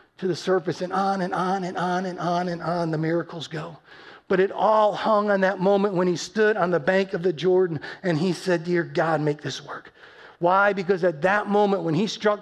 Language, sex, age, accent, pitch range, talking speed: English, male, 40-59, American, 170-205 Hz, 230 wpm